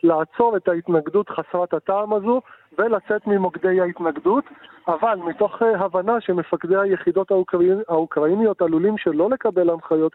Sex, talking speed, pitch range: male, 125 wpm, 155-185 Hz